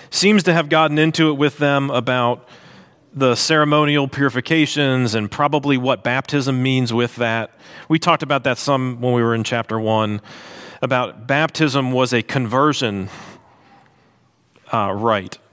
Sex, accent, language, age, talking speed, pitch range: male, American, English, 40-59, 145 wpm, 115-155 Hz